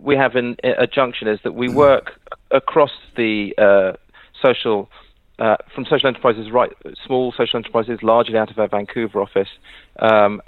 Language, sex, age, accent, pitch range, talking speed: English, male, 40-59, British, 100-115 Hz, 155 wpm